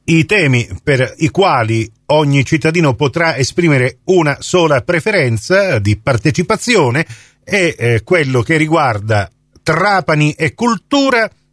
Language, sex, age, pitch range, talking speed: Italian, male, 40-59, 140-190 Hz, 110 wpm